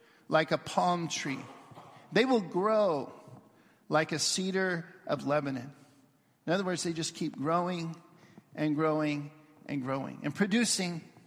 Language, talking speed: English, 135 wpm